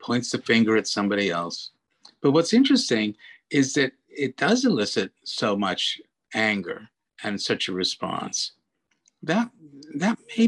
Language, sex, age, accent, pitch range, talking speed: English, male, 50-69, American, 95-140 Hz, 135 wpm